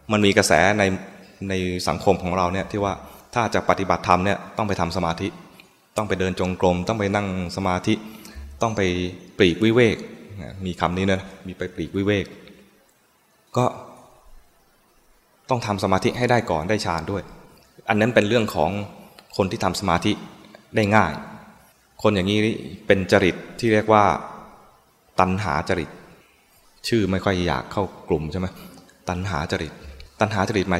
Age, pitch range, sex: 20-39, 90-105 Hz, male